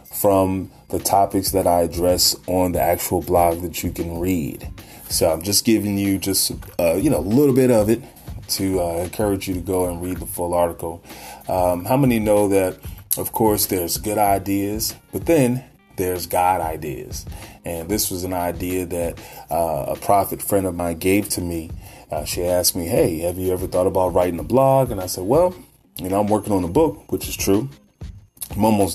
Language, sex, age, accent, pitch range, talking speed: English, male, 30-49, American, 90-105 Hz, 205 wpm